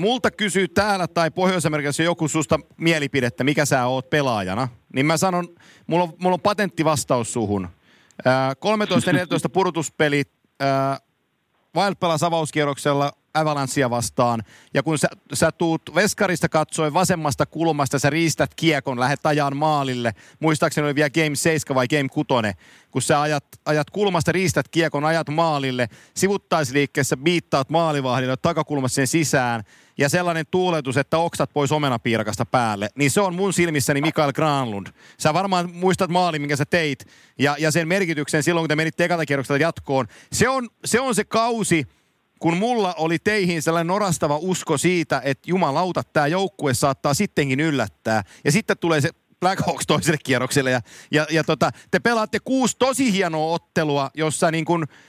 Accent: native